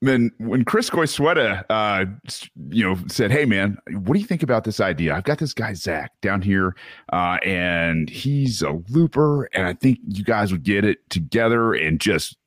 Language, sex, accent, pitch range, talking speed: English, male, American, 100-140 Hz, 195 wpm